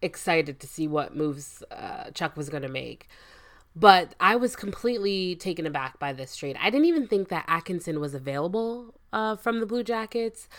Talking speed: 185 wpm